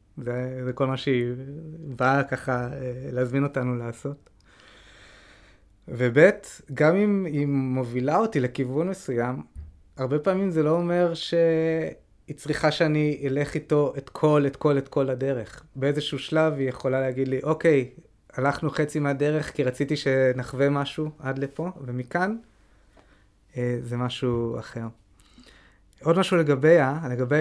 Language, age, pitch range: Hebrew, 20-39, 125-150 Hz